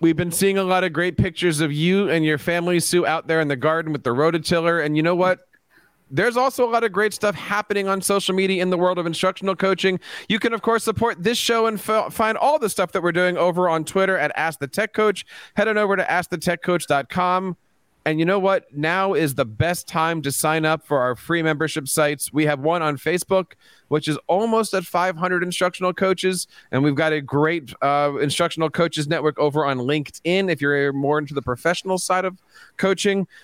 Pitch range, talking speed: 155-195 Hz, 210 wpm